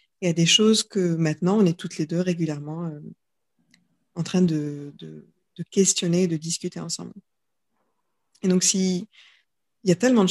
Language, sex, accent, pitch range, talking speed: French, female, French, 165-195 Hz, 170 wpm